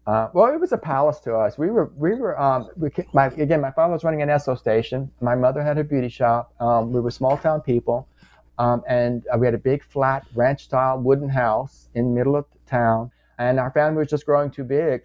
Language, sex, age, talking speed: English, male, 30-49, 240 wpm